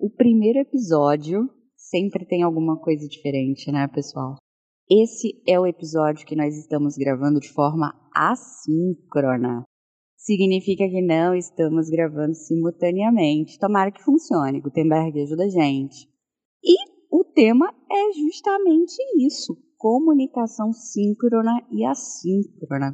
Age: 20-39